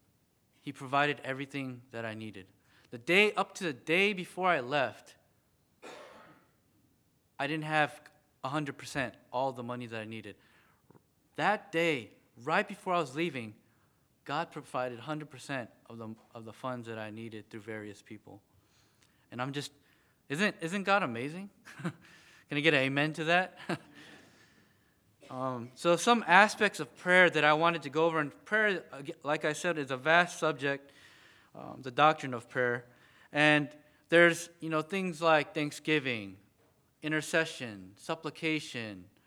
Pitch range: 125-170 Hz